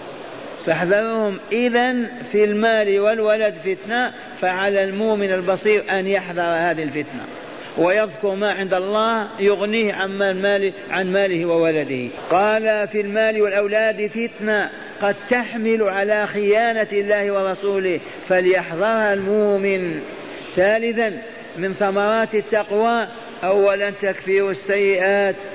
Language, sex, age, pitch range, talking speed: Arabic, male, 50-69, 190-210 Hz, 95 wpm